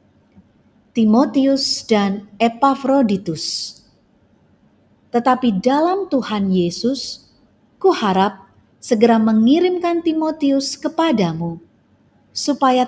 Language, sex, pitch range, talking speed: Indonesian, female, 200-275 Hz, 65 wpm